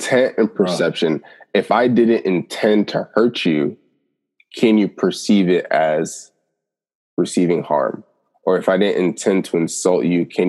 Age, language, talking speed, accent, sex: 20-39, English, 150 wpm, American, male